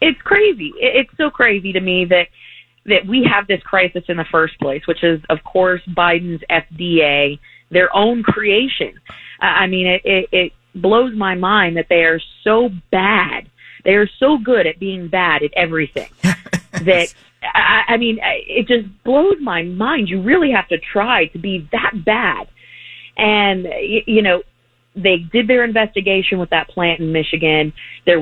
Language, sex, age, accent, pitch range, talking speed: English, female, 30-49, American, 170-205 Hz, 170 wpm